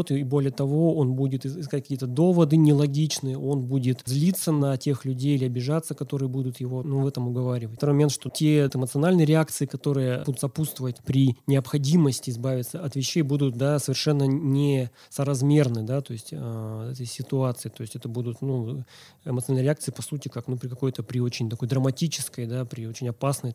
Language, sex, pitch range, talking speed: Russian, male, 130-150 Hz, 170 wpm